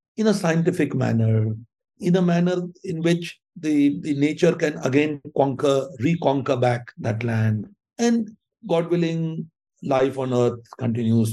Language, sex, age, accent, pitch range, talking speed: English, male, 60-79, Indian, 115-180 Hz, 140 wpm